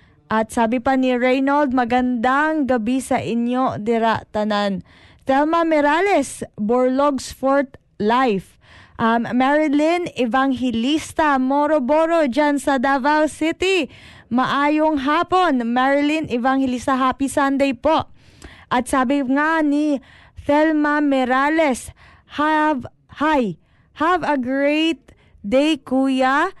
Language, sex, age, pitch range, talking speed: Filipino, female, 20-39, 245-300 Hz, 95 wpm